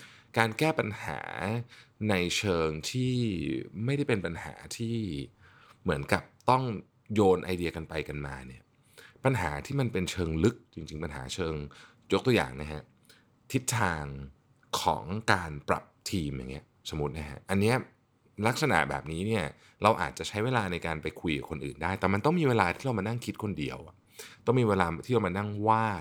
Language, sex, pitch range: Thai, male, 80-115 Hz